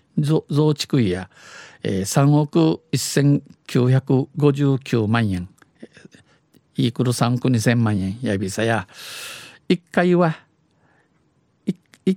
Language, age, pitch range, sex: Japanese, 50-69, 110-150 Hz, male